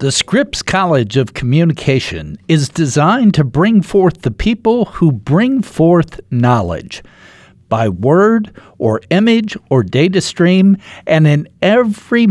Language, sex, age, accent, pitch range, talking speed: English, male, 60-79, American, 125-190 Hz, 125 wpm